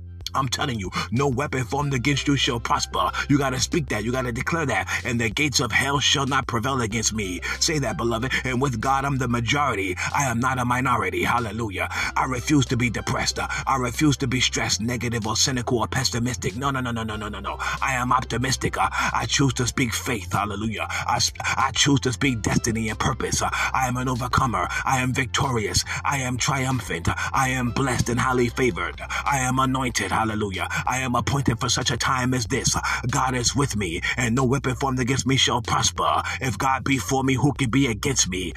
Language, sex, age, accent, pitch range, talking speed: English, male, 30-49, American, 115-135 Hz, 215 wpm